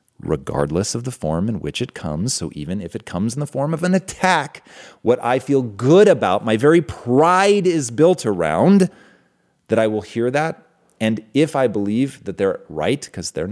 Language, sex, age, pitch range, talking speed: English, male, 30-49, 90-125 Hz, 195 wpm